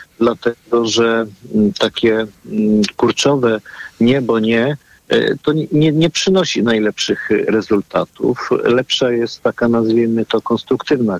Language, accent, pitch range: Polish, native, 105-155 Hz